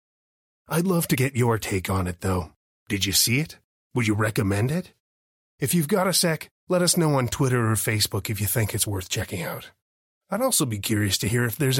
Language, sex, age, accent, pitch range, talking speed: English, male, 30-49, American, 100-140 Hz, 225 wpm